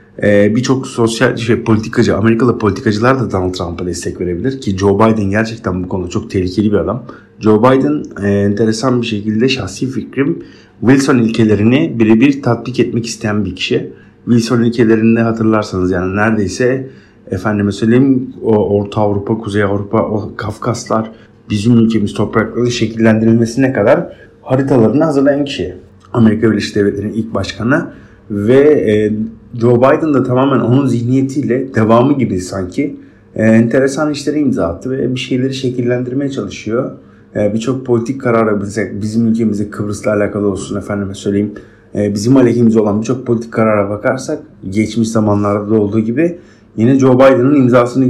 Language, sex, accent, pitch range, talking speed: Turkish, male, native, 105-125 Hz, 140 wpm